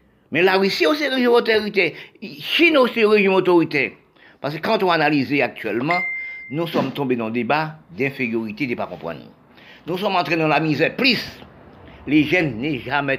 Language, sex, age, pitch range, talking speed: French, male, 50-69, 135-200 Hz, 175 wpm